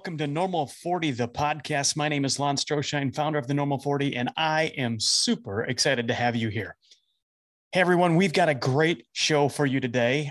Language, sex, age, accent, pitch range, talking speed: English, male, 30-49, American, 135-180 Hz, 205 wpm